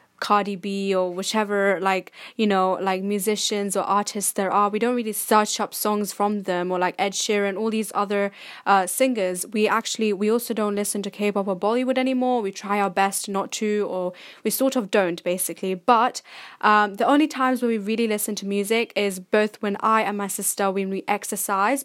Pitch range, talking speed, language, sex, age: 195-220 Hz, 205 wpm, English, female, 10-29